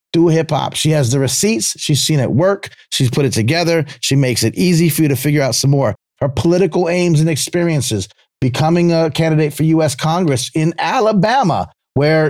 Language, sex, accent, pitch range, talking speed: English, male, American, 125-170 Hz, 195 wpm